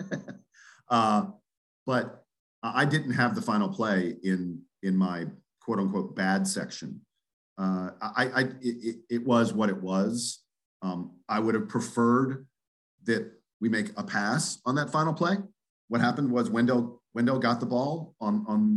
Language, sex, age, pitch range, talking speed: English, male, 40-59, 100-135 Hz, 155 wpm